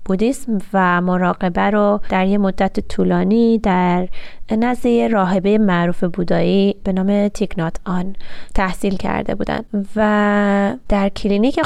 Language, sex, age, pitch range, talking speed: Persian, female, 20-39, 190-225 Hz, 120 wpm